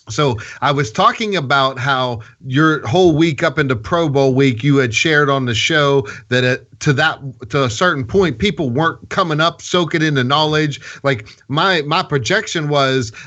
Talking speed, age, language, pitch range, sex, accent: 180 wpm, 30-49, English, 135-175 Hz, male, American